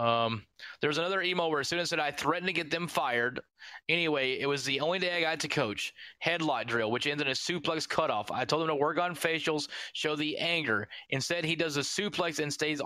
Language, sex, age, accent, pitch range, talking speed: English, male, 20-39, American, 140-170 Hz, 235 wpm